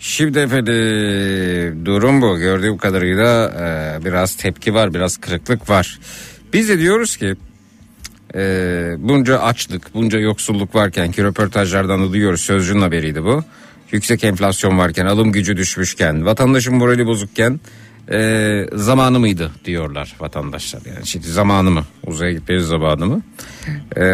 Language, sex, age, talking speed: Turkish, male, 60-79, 125 wpm